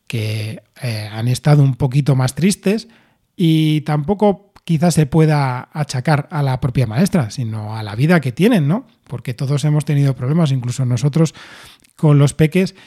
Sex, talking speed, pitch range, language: male, 165 wpm, 130-160 Hz, Spanish